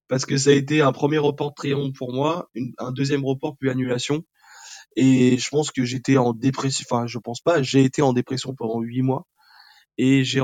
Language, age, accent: French, 20-39, French